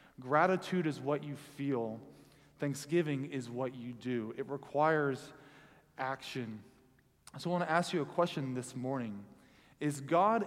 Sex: male